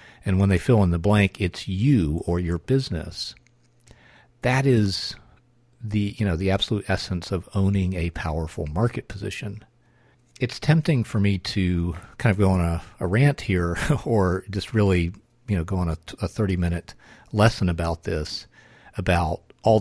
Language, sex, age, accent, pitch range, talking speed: English, male, 50-69, American, 90-115 Hz, 165 wpm